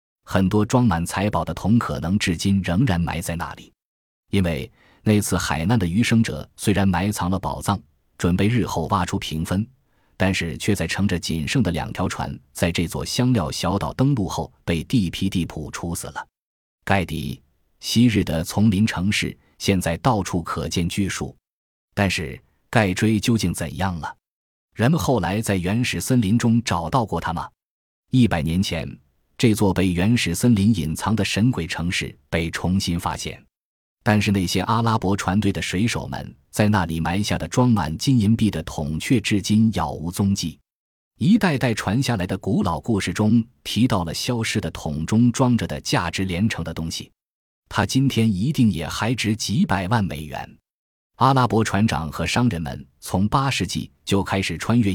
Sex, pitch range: male, 85-110 Hz